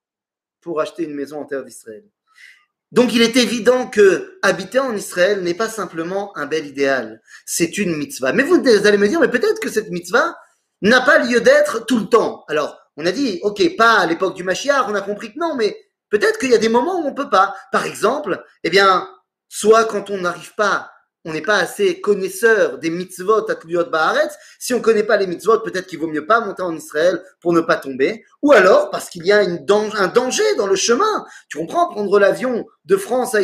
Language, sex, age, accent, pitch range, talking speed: French, male, 30-49, French, 180-260 Hz, 225 wpm